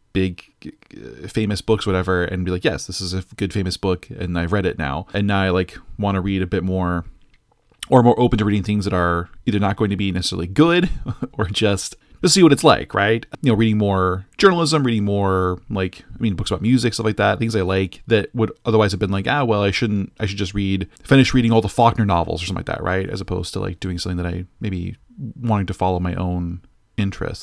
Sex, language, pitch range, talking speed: male, English, 90-110 Hz, 245 wpm